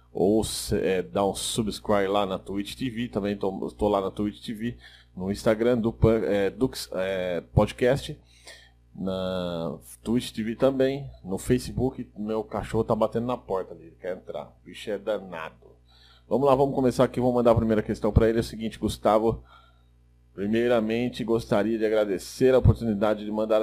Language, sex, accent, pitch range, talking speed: Portuguese, male, Brazilian, 85-115 Hz, 155 wpm